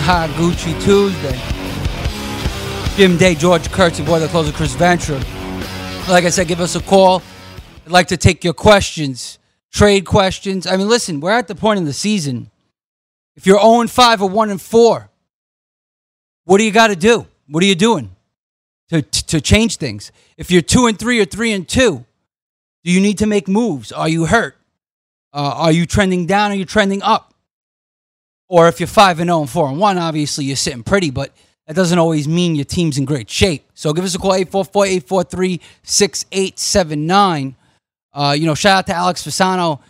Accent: American